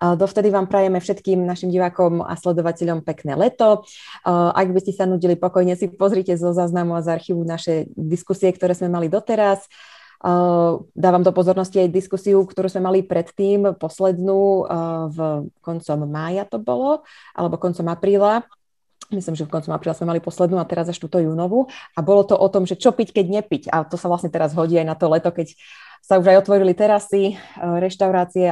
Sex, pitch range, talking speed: female, 165-195 Hz, 185 wpm